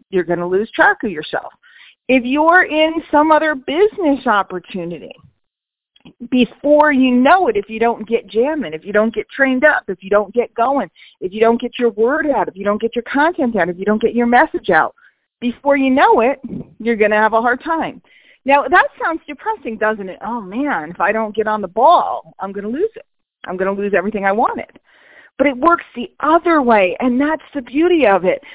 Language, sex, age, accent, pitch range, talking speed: English, female, 40-59, American, 220-300 Hz, 225 wpm